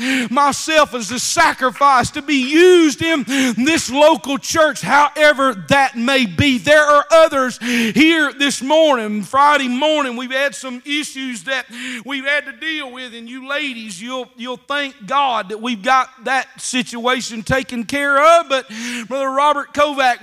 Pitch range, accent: 240-285 Hz, American